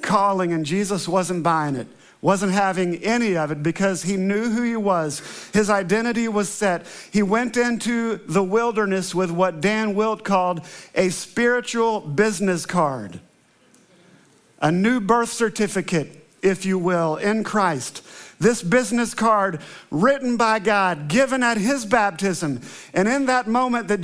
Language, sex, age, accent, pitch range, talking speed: English, male, 50-69, American, 185-245 Hz, 145 wpm